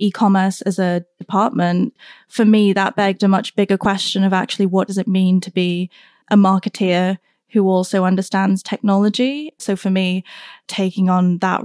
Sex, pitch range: female, 185-205 Hz